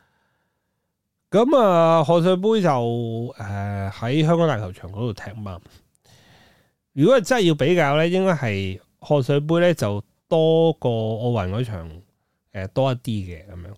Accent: native